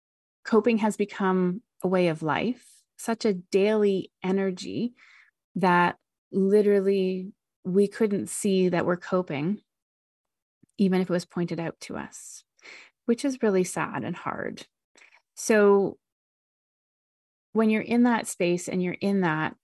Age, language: 30-49, English